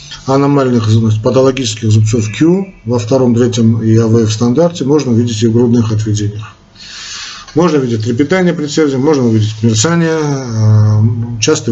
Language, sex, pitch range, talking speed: Russian, male, 110-145 Hz, 130 wpm